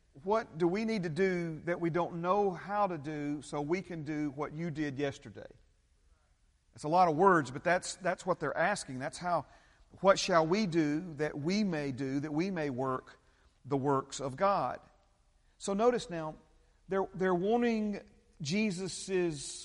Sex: male